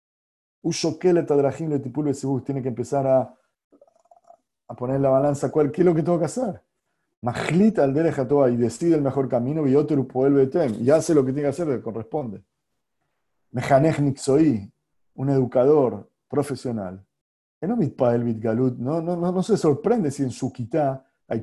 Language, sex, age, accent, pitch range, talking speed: Spanish, male, 40-59, Argentinian, 125-170 Hz, 160 wpm